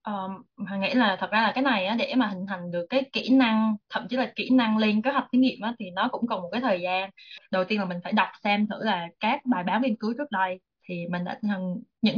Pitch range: 185-245 Hz